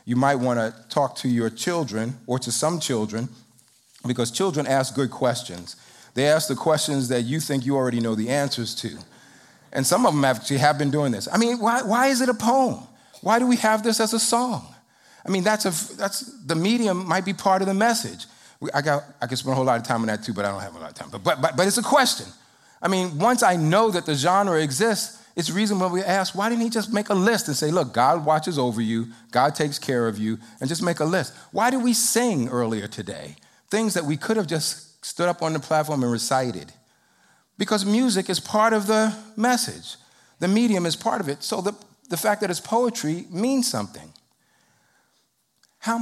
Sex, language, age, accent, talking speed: male, English, 40-59, American, 230 wpm